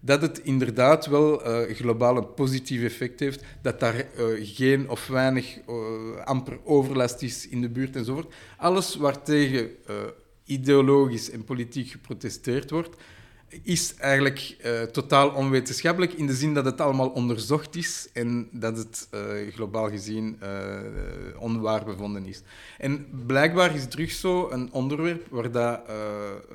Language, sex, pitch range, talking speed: Dutch, male, 115-140 Hz, 145 wpm